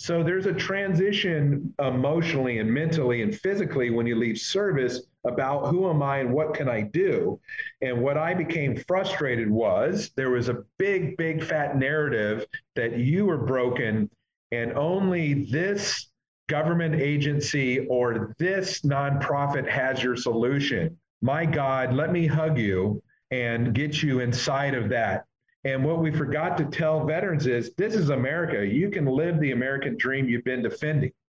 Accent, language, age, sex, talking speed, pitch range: American, English, 40-59, male, 155 wpm, 120-160 Hz